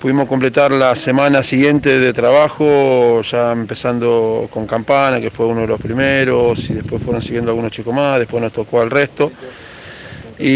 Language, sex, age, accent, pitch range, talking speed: Spanish, male, 40-59, Argentinian, 120-140 Hz, 170 wpm